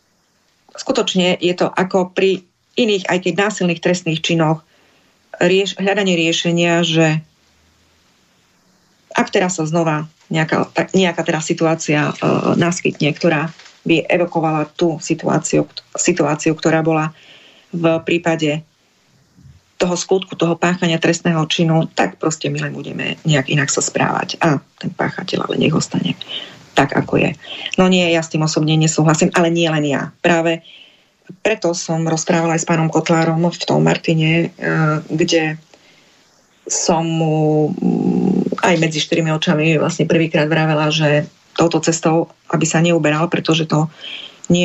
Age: 30-49